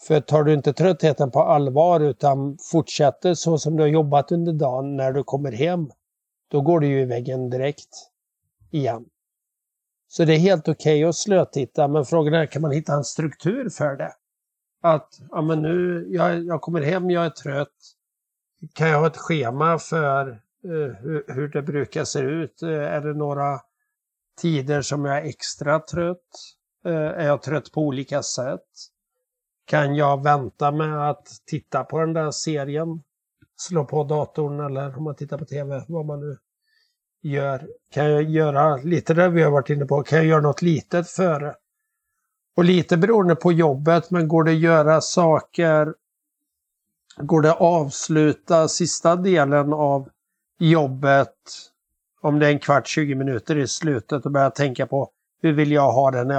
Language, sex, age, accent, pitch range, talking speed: Swedish, male, 60-79, native, 145-165 Hz, 175 wpm